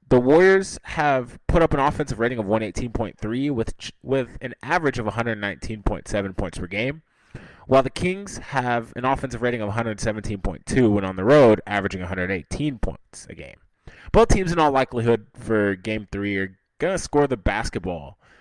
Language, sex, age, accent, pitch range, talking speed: English, male, 20-39, American, 100-140 Hz, 170 wpm